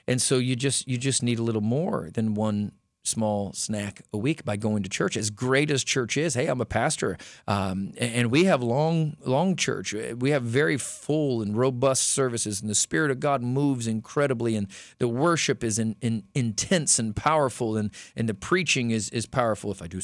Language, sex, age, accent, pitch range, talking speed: English, male, 40-59, American, 110-135 Hz, 210 wpm